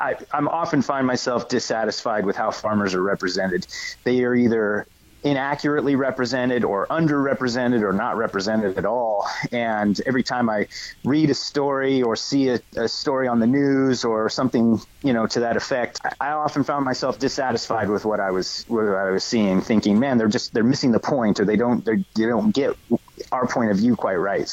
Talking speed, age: 195 wpm, 30-49